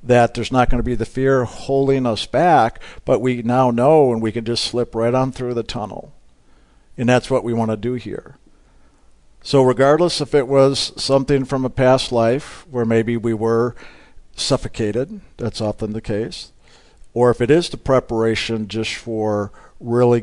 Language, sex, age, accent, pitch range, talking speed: English, male, 50-69, American, 110-130 Hz, 180 wpm